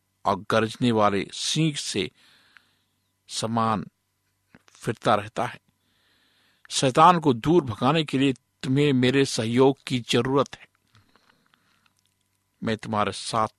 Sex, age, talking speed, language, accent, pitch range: male, 60-79, 105 wpm, Hindi, native, 100-135 Hz